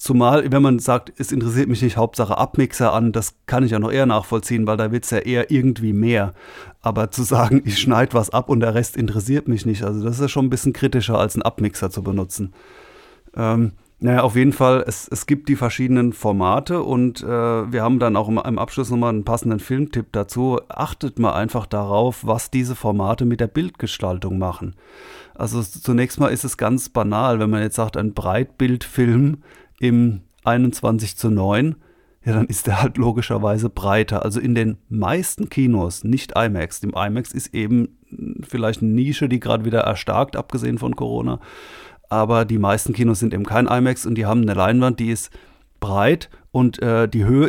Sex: male